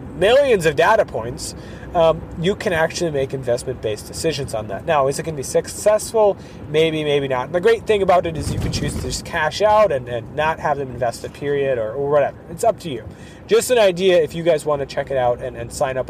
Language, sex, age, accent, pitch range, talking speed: English, male, 30-49, American, 135-195 Hz, 245 wpm